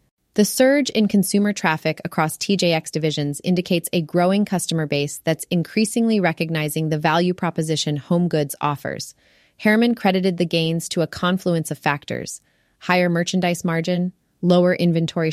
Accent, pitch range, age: American, 155-185 Hz, 30-49